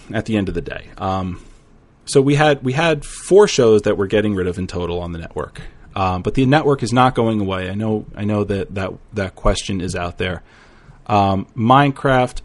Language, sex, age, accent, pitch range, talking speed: English, male, 30-49, American, 100-135 Hz, 215 wpm